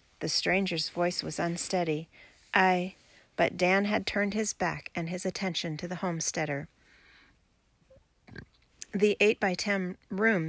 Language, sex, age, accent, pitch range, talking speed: English, female, 40-59, American, 175-220 Hz, 120 wpm